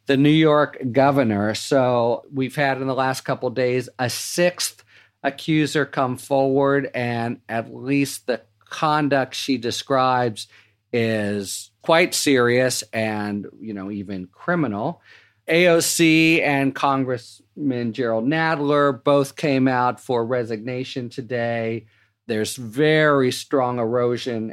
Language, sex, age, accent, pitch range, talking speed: English, male, 40-59, American, 110-140 Hz, 115 wpm